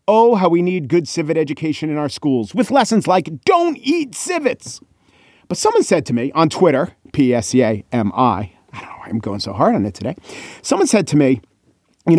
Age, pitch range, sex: 40-59, 130-175 Hz, male